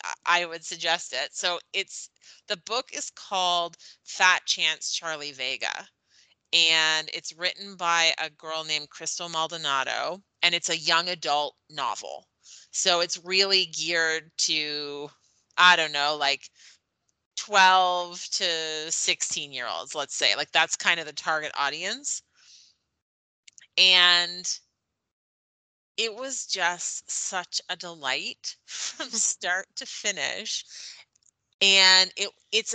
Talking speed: 120 wpm